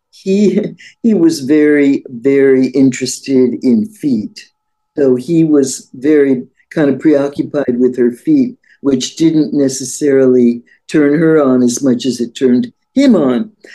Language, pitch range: English, 130-180 Hz